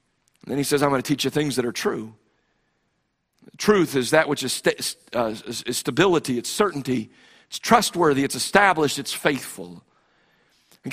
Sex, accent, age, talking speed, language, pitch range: male, American, 50-69, 165 wpm, English, 140-185 Hz